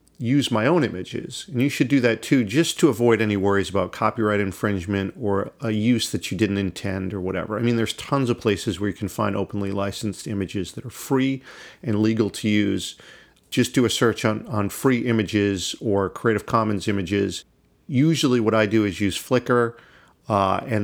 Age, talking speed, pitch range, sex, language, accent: 40-59, 195 wpm, 105-140 Hz, male, English, American